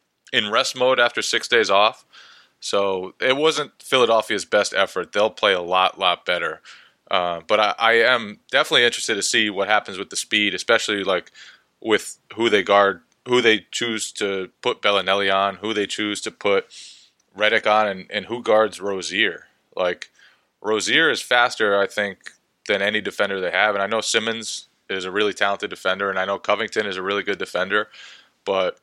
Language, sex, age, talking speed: English, male, 20-39, 185 wpm